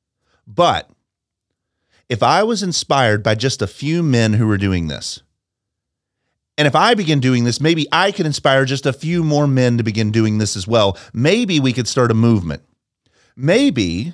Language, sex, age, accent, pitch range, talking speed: English, male, 40-59, American, 105-145 Hz, 180 wpm